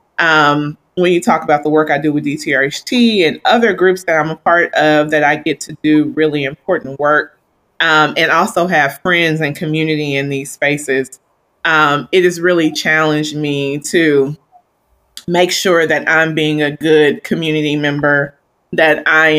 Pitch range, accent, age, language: 145-165 Hz, American, 20-39, English